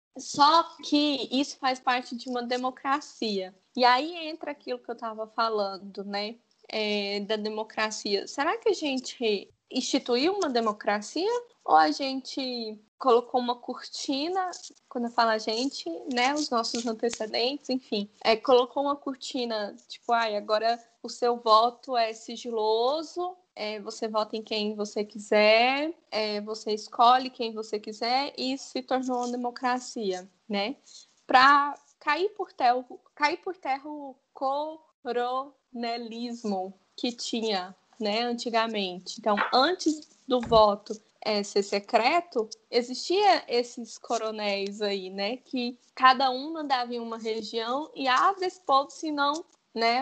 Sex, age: female, 10-29